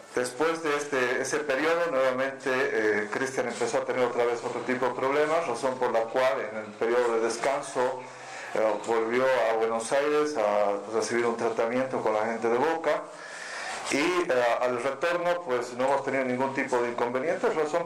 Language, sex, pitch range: Spanish, male, 110-130 Hz